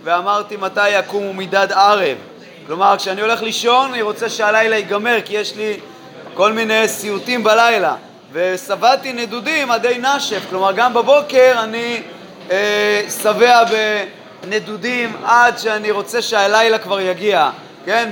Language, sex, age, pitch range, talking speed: Hebrew, male, 30-49, 195-230 Hz, 125 wpm